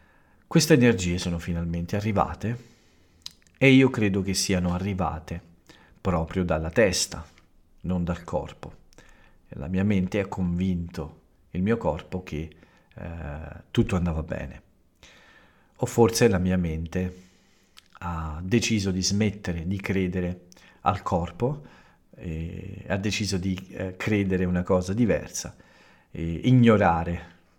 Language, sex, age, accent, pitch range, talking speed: Italian, male, 50-69, native, 85-105 Hz, 115 wpm